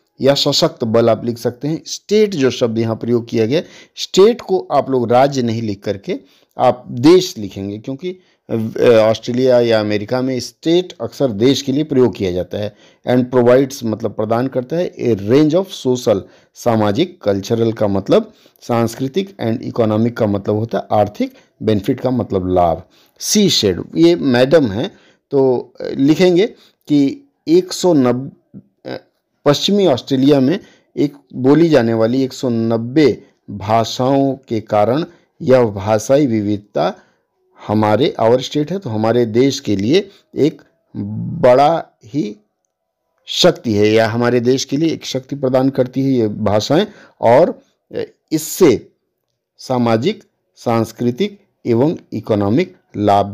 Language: Hindi